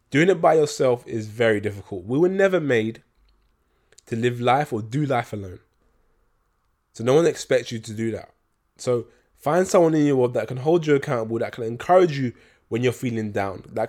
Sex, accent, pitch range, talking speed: male, British, 115-145 Hz, 200 wpm